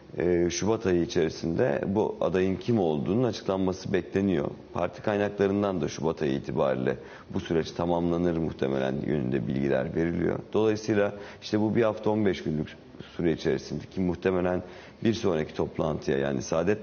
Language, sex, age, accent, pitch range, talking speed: Turkish, male, 50-69, native, 80-100 Hz, 135 wpm